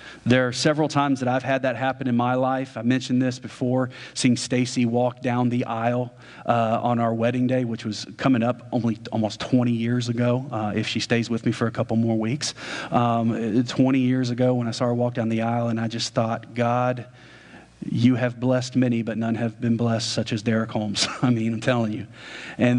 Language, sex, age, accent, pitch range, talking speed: English, male, 40-59, American, 115-130 Hz, 220 wpm